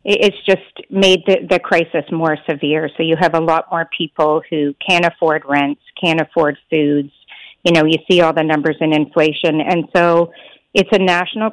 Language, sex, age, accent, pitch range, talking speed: English, female, 40-59, American, 155-175 Hz, 185 wpm